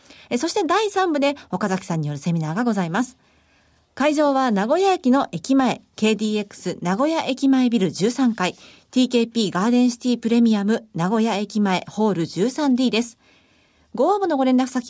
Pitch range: 200-280 Hz